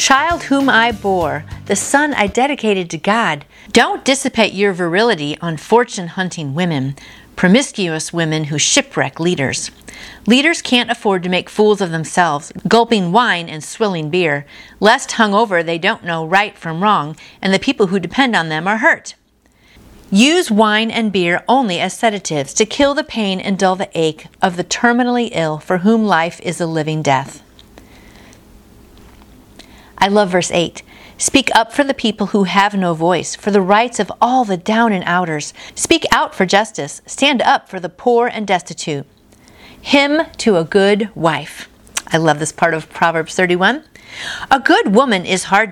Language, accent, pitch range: English, American, 170-230 Hz